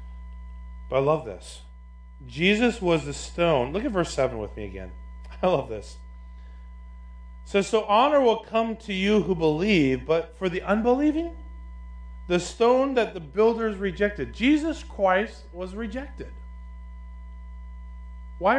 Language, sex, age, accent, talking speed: English, male, 40-59, American, 140 wpm